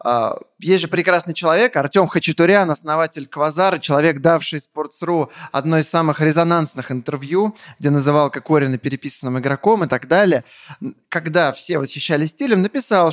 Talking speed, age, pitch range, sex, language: 135 wpm, 20-39, 145-195 Hz, male, Russian